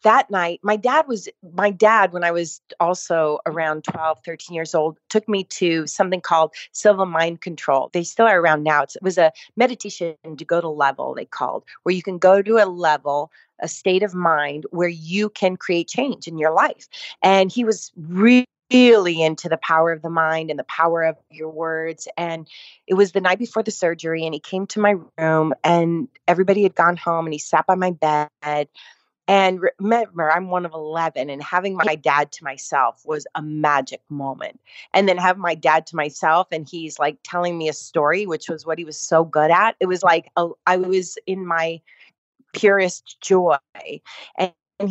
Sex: female